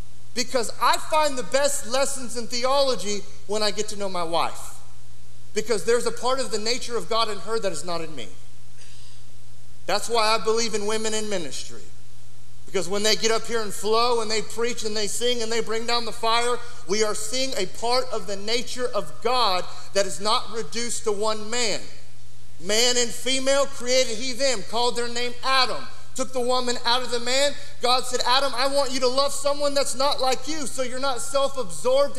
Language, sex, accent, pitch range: English, male, American, 210-275 Hz